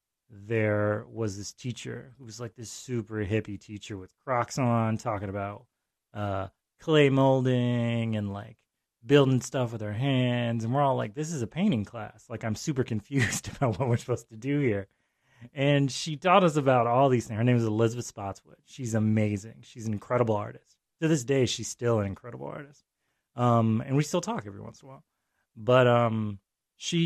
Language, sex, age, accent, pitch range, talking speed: English, male, 30-49, American, 105-125 Hz, 190 wpm